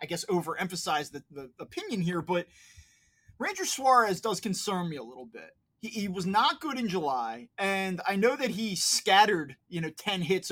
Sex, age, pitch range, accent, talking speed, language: male, 20-39, 170-230 Hz, American, 190 wpm, English